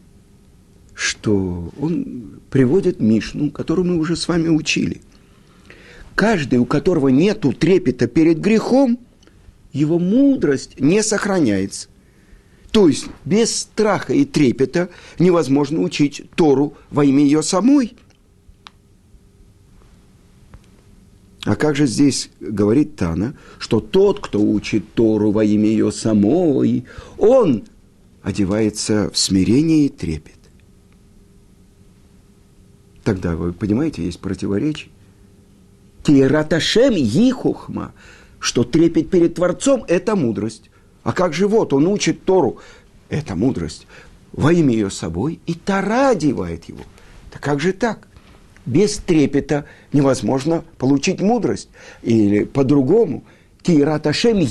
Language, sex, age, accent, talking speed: Russian, male, 50-69, native, 110 wpm